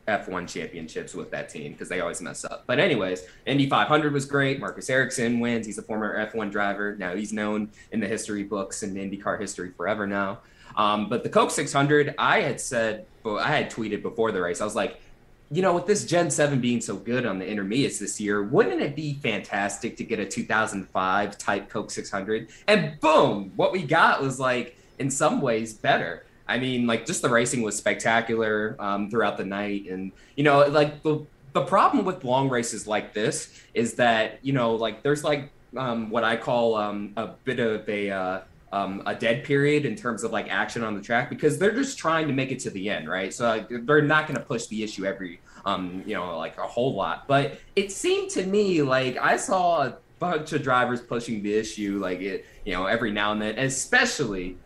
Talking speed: 215 wpm